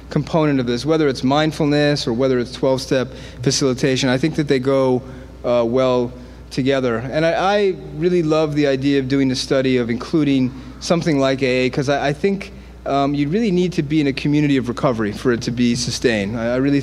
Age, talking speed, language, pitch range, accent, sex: 30-49, 205 wpm, English, 130-155 Hz, American, male